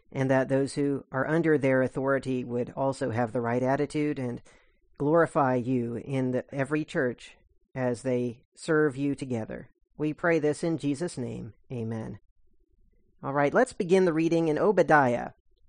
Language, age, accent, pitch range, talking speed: English, 40-59, American, 140-185 Hz, 155 wpm